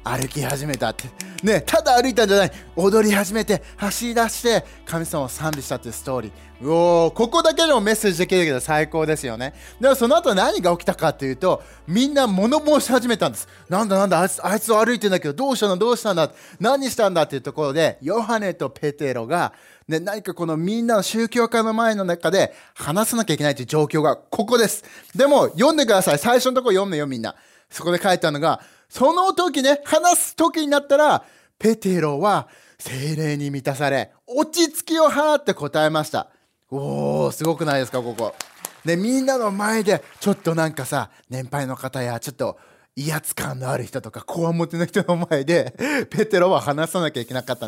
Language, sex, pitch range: Japanese, male, 145-230 Hz